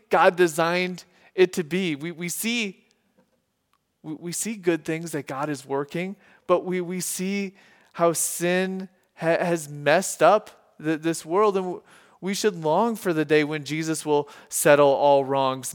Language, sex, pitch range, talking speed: English, male, 155-195 Hz, 160 wpm